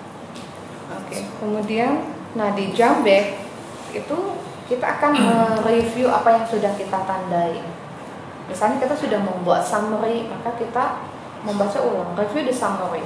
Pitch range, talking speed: 185-225 Hz, 125 wpm